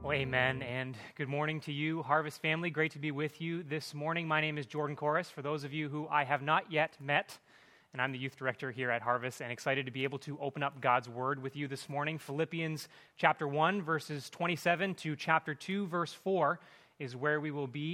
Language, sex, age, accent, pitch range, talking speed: English, male, 30-49, American, 145-180 Hz, 230 wpm